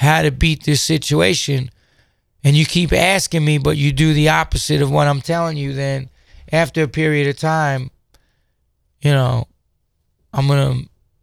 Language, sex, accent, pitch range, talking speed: English, male, American, 130-155 Hz, 160 wpm